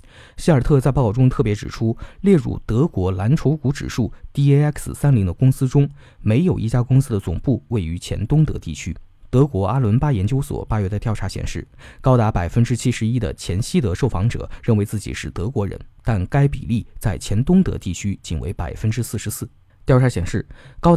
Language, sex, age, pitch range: Chinese, male, 20-39, 100-135 Hz